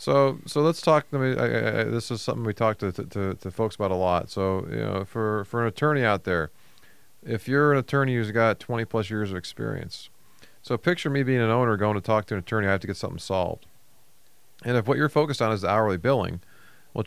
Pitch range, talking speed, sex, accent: 105-130 Hz, 235 wpm, male, American